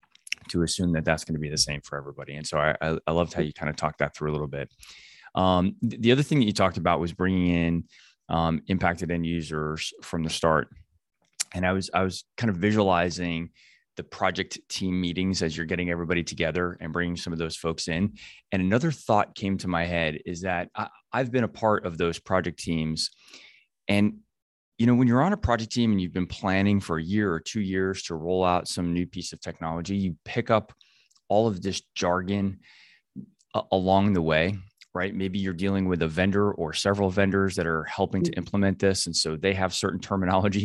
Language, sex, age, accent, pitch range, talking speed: English, male, 20-39, American, 85-100 Hz, 215 wpm